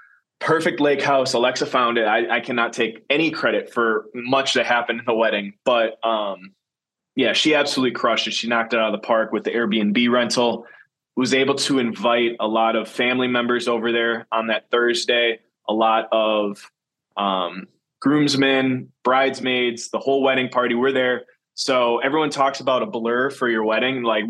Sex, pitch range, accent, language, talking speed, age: male, 115-135 Hz, American, English, 180 wpm, 20-39